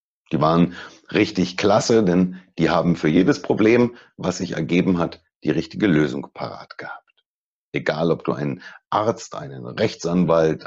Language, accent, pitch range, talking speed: German, German, 80-100 Hz, 145 wpm